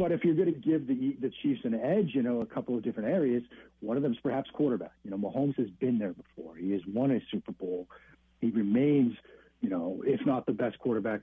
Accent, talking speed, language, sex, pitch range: American, 245 wpm, English, male, 115-145 Hz